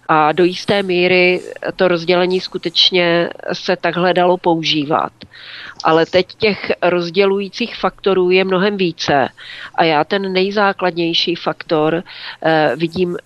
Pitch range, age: 165-185 Hz, 40-59